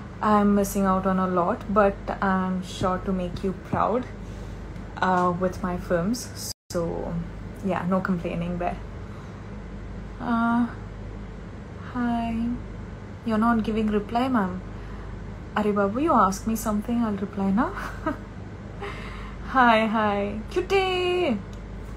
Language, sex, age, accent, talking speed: Tamil, female, 20-39, native, 115 wpm